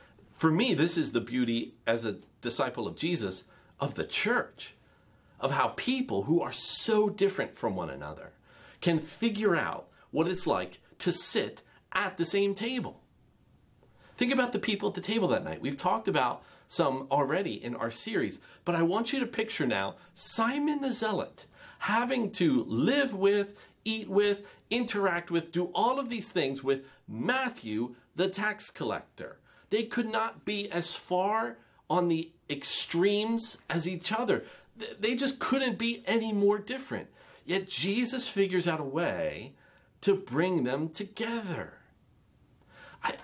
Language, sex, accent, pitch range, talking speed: English, male, American, 165-220 Hz, 155 wpm